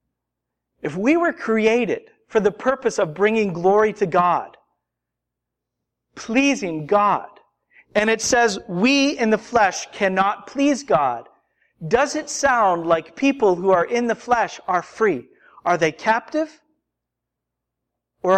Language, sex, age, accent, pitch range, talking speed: English, male, 50-69, American, 185-260 Hz, 130 wpm